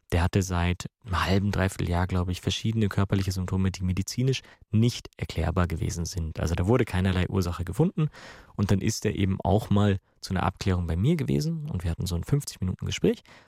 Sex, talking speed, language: male, 190 wpm, German